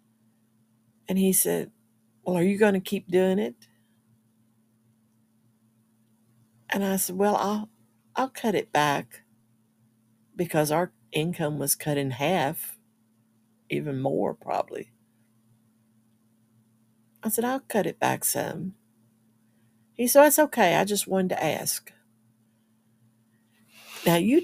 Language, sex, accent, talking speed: English, female, American, 120 wpm